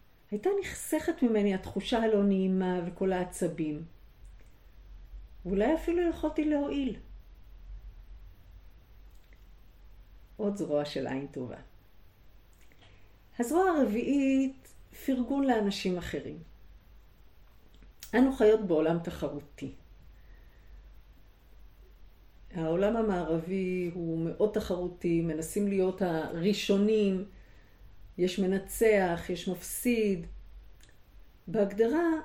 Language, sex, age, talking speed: Hebrew, female, 50-69, 75 wpm